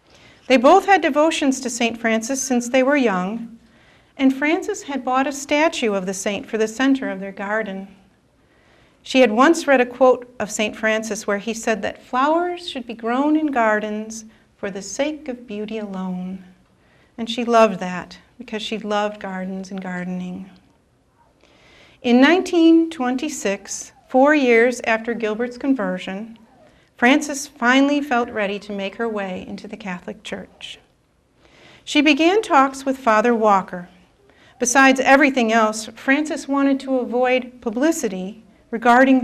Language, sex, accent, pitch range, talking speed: English, female, American, 210-270 Hz, 145 wpm